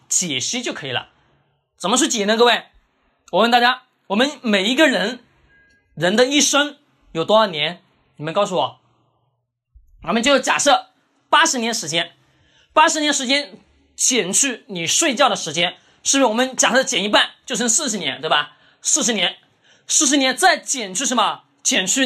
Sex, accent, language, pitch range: male, native, Chinese, 190-285 Hz